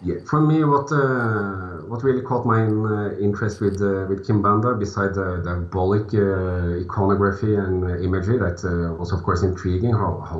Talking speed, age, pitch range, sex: 175 wpm, 40-59, 95-110 Hz, male